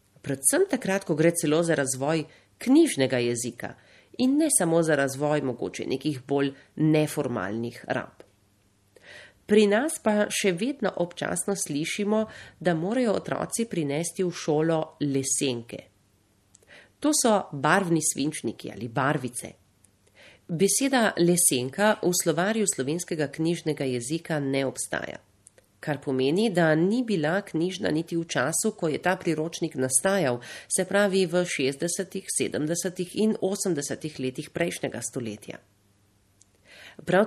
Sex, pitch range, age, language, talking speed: female, 135-195 Hz, 30-49, Italian, 120 wpm